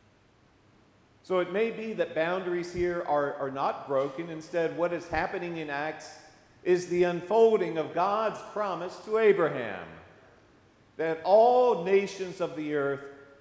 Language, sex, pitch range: English, male, 120-170 Hz